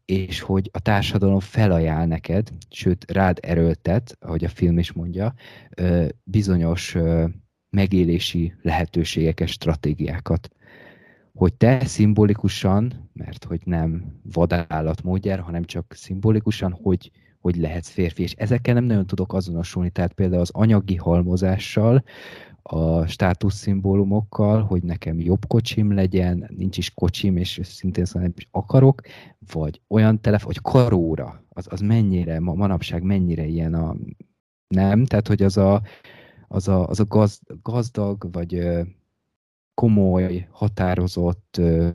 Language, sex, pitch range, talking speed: Hungarian, male, 85-105 Hz, 125 wpm